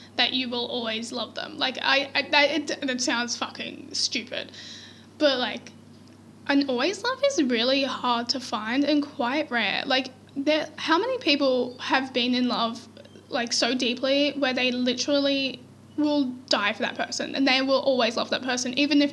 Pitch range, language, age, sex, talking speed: 245-290 Hz, English, 10-29, female, 180 wpm